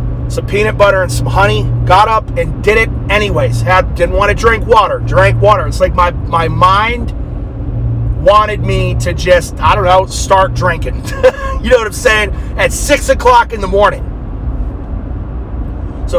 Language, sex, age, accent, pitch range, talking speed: English, male, 30-49, American, 125-190 Hz, 170 wpm